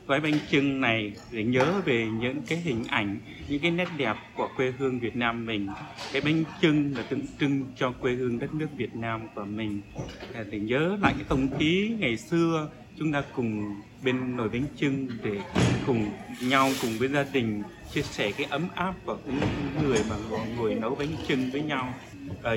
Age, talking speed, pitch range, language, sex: 20-39, 200 wpm, 115-155 Hz, Vietnamese, male